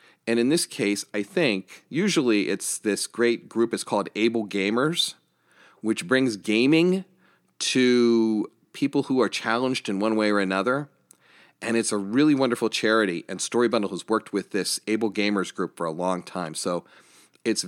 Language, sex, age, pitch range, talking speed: English, male, 40-59, 95-120 Hz, 170 wpm